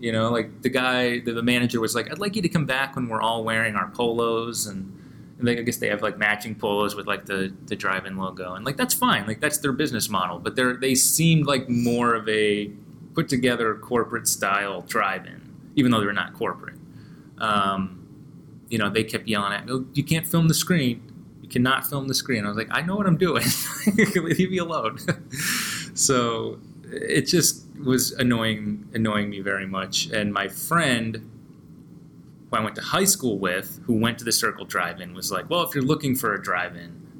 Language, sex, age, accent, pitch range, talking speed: English, male, 20-39, American, 110-150 Hz, 205 wpm